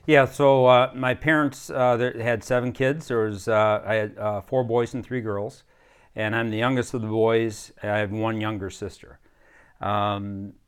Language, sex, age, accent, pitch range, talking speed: English, male, 40-59, American, 100-120 Hz, 195 wpm